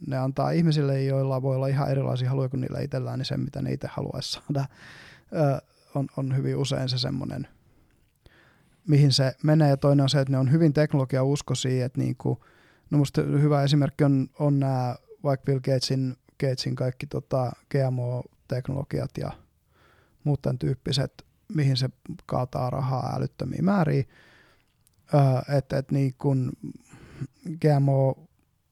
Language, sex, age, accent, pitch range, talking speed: Finnish, male, 20-39, native, 130-145 Hz, 145 wpm